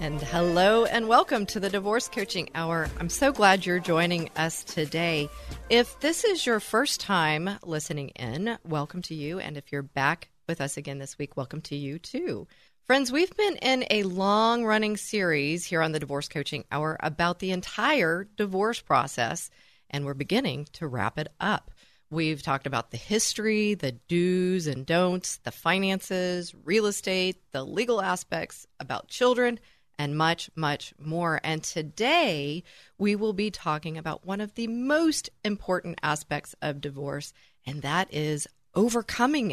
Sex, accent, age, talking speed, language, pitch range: female, American, 40-59, 160 wpm, English, 150-210 Hz